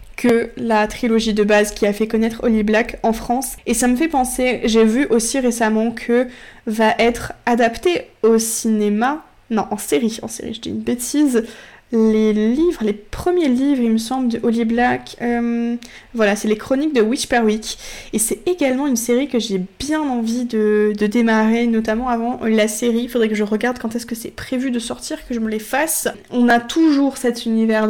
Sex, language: female, French